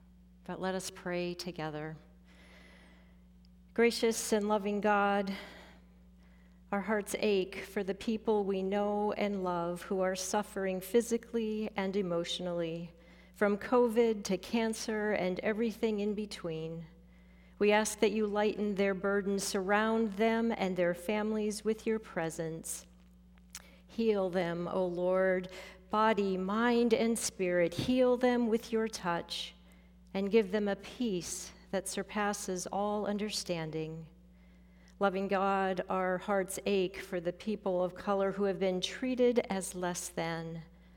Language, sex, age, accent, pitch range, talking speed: English, female, 40-59, American, 170-210 Hz, 125 wpm